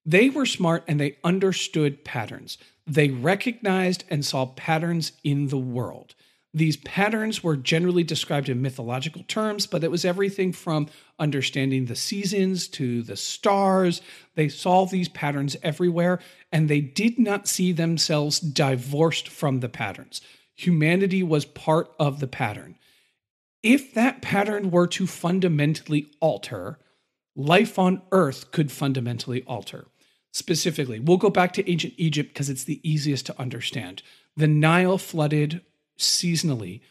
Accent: American